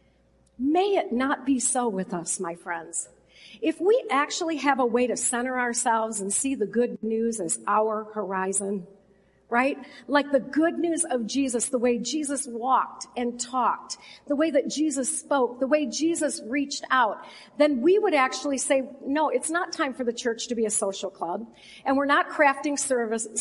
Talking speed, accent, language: 180 wpm, American, English